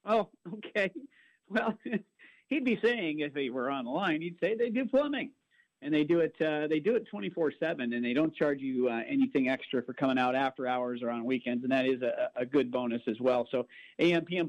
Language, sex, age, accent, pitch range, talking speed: English, male, 50-69, American, 140-180 Hz, 220 wpm